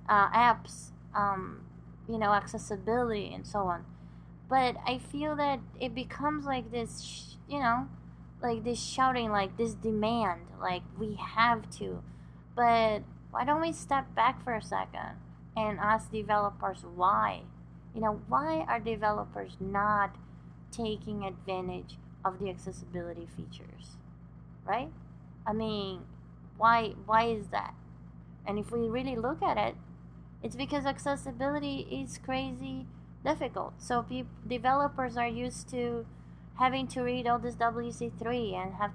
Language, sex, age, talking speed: English, female, 20-39, 135 wpm